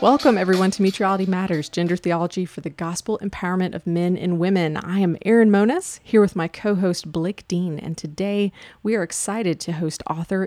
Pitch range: 165-200 Hz